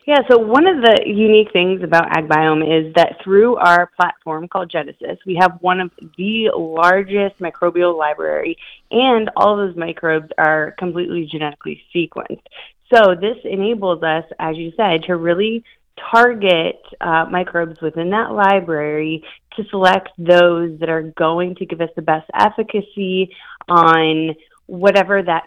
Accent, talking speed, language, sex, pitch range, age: American, 150 wpm, English, female, 170-210 Hz, 30-49